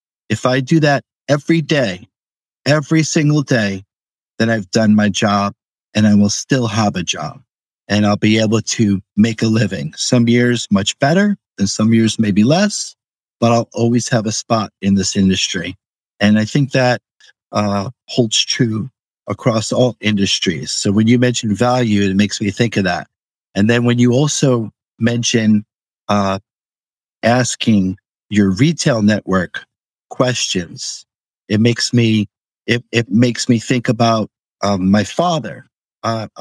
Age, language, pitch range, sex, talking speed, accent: 50-69, English, 105-125 Hz, male, 155 wpm, American